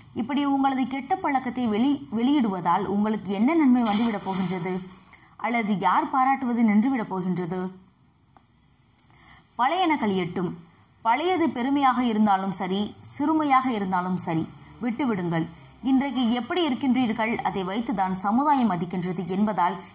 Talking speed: 105 wpm